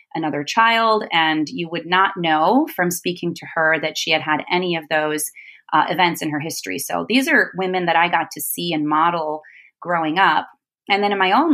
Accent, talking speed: American, 215 wpm